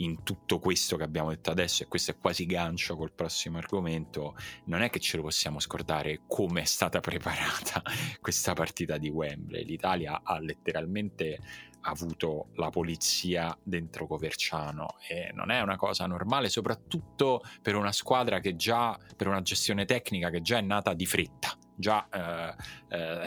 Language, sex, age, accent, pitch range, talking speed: Italian, male, 30-49, native, 80-95 Hz, 160 wpm